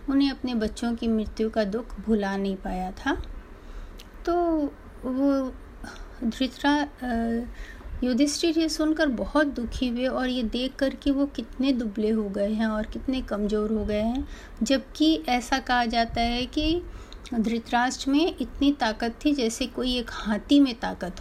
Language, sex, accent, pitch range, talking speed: Hindi, female, native, 215-260 Hz, 150 wpm